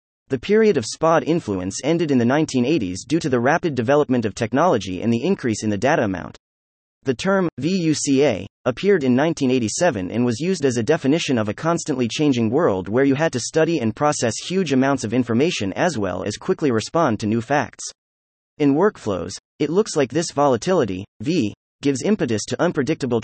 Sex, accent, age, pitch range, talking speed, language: male, American, 30-49, 105-155 Hz, 185 wpm, English